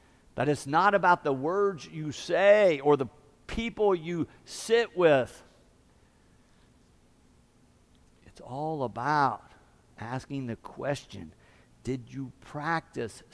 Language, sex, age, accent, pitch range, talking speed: English, male, 50-69, American, 105-155 Hz, 105 wpm